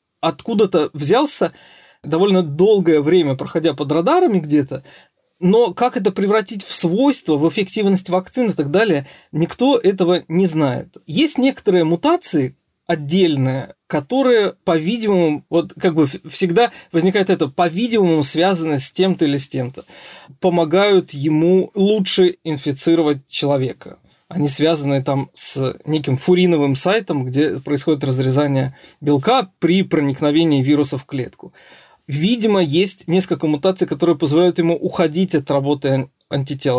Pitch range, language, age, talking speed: 150-190 Hz, Russian, 20-39, 125 wpm